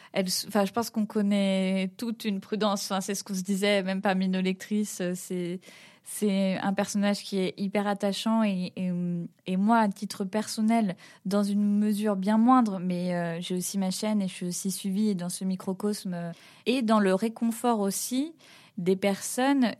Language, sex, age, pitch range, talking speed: French, female, 20-39, 190-220 Hz, 180 wpm